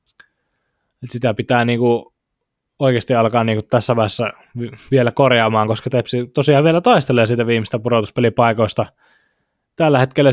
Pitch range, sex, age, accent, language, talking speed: 110-130 Hz, male, 20-39, native, Finnish, 130 wpm